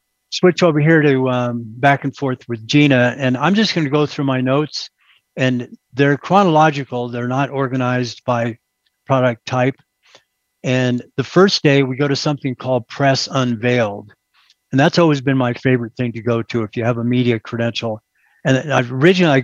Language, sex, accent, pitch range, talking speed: English, male, American, 120-135 Hz, 180 wpm